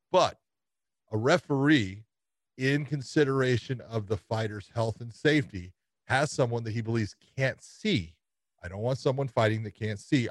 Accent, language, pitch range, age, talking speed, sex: American, English, 110-135 Hz, 40-59, 150 wpm, male